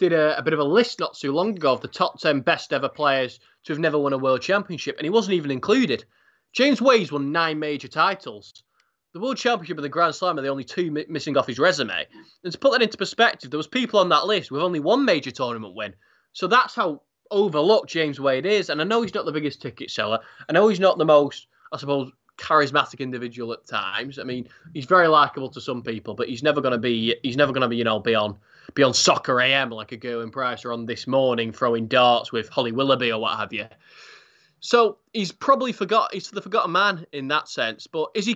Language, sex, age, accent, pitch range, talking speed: English, male, 20-39, British, 130-200 Hz, 245 wpm